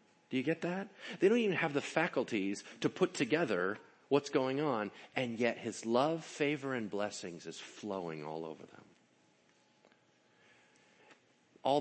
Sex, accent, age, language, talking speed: male, American, 40-59, English, 145 wpm